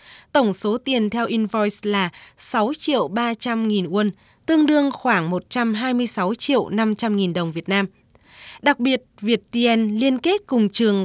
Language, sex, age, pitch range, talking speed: Vietnamese, female, 20-39, 195-245 Hz, 155 wpm